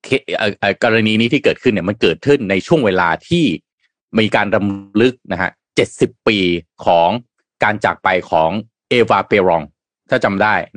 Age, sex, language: 30-49, male, Thai